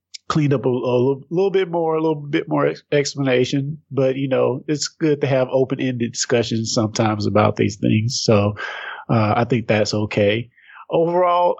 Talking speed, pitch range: 170 wpm, 115-140 Hz